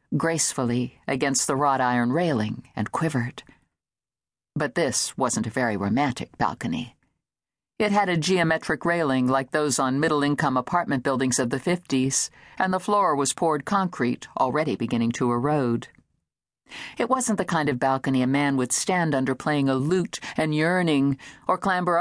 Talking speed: 155 wpm